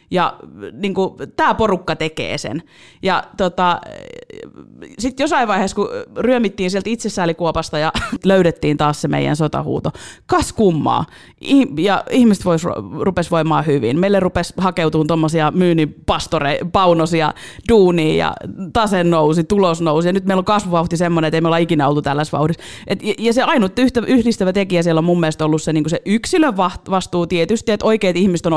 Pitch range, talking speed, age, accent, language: 160-200 Hz, 160 wpm, 30-49, native, Finnish